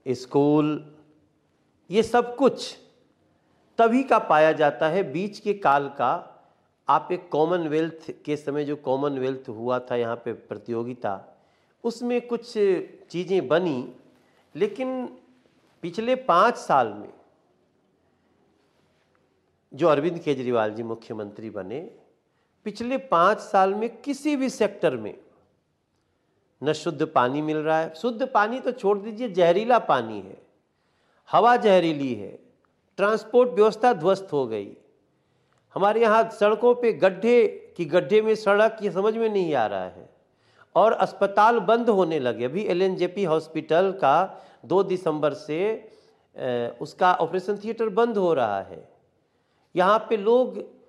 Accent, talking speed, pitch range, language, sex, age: native, 130 wpm, 155-225 Hz, Hindi, male, 50-69